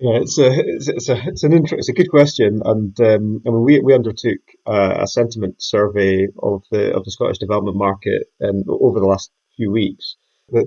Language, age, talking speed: English, 30-49, 215 wpm